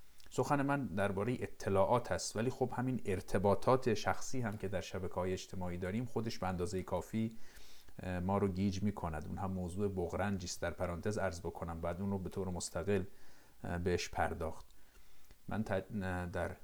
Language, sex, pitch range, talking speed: Persian, male, 90-110 Hz, 160 wpm